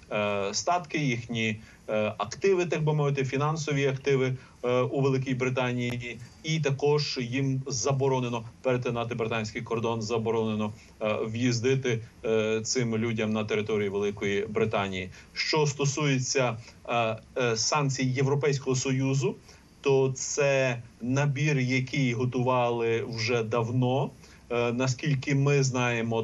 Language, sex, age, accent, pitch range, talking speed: Ukrainian, male, 30-49, native, 115-135 Hz, 95 wpm